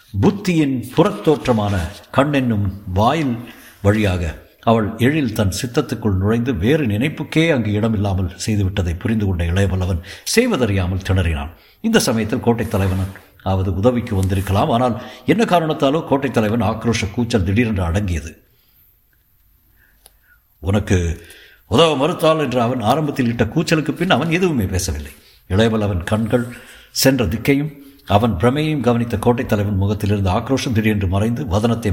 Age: 60-79